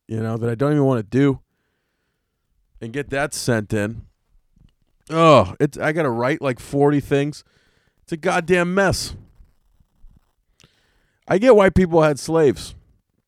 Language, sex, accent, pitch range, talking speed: English, male, American, 110-150 Hz, 145 wpm